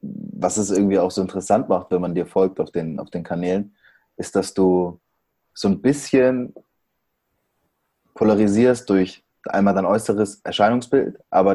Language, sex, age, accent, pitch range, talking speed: German, male, 20-39, German, 95-105 Hz, 150 wpm